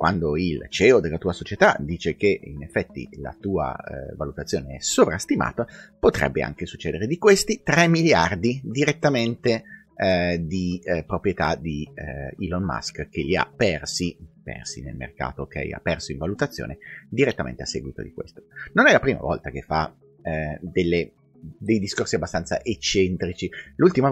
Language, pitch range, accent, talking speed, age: Italian, 80-120 Hz, native, 155 wpm, 30-49